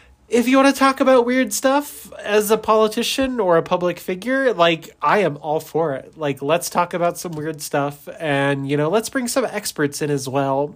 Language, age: English, 30-49